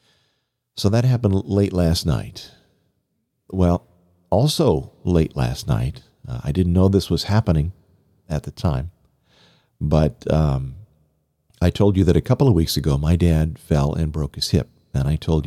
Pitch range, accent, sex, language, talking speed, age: 75-100 Hz, American, male, English, 165 wpm, 50-69